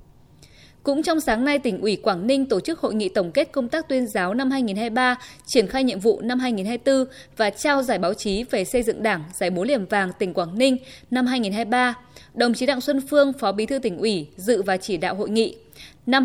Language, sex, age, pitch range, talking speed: Vietnamese, female, 20-39, 205-265 Hz, 225 wpm